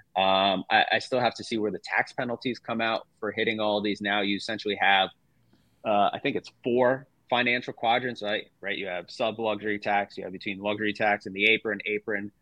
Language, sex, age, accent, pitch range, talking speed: English, male, 30-49, American, 105-125 Hz, 215 wpm